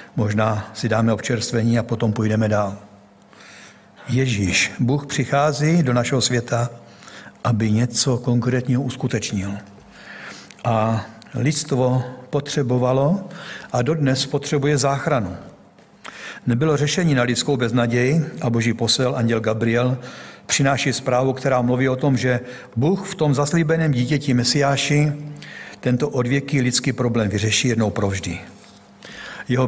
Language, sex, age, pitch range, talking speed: Czech, male, 60-79, 120-145 Hz, 115 wpm